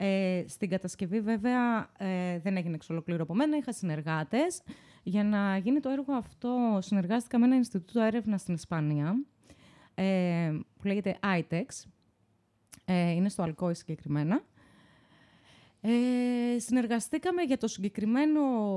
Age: 20-39